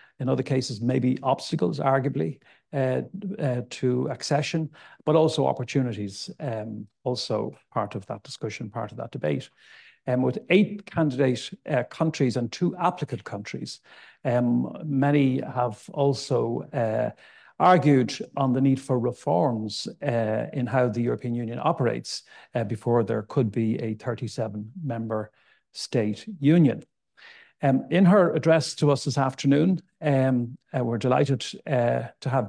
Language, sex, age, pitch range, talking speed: English, male, 60-79, 120-150 Hz, 140 wpm